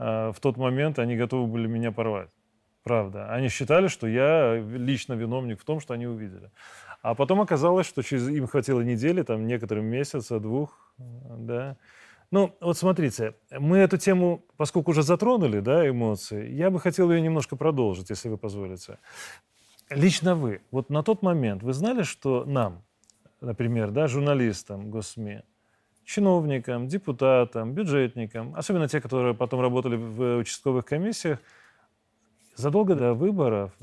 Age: 20-39